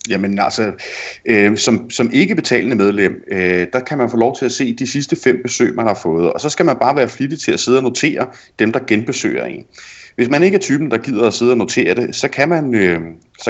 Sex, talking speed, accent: male, 225 wpm, native